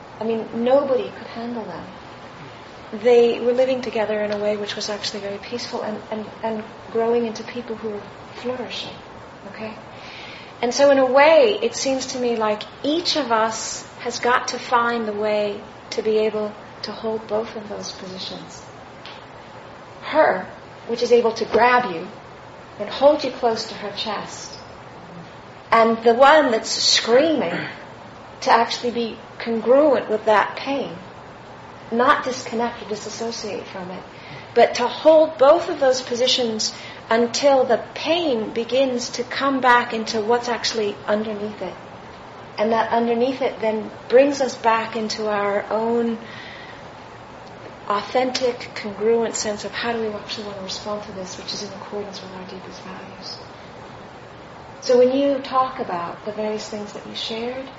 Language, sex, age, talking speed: English, female, 40-59, 155 wpm